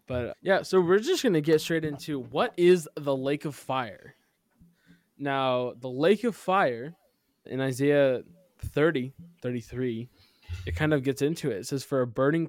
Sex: male